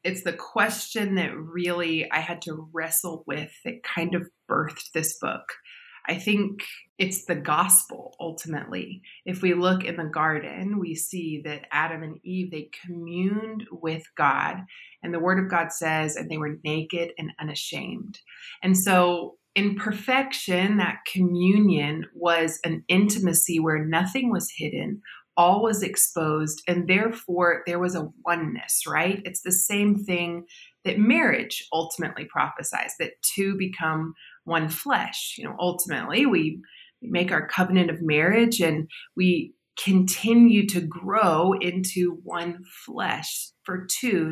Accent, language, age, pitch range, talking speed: American, English, 30-49, 160-195 Hz, 140 wpm